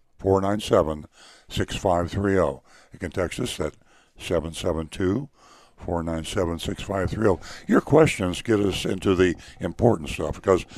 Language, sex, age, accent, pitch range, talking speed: English, male, 60-79, American, 85-105 Hz, 85 wpm